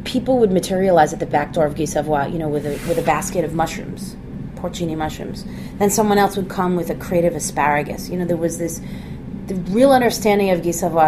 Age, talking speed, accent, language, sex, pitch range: 30-49, 215 wpm, American, English, female, 160-200 Hz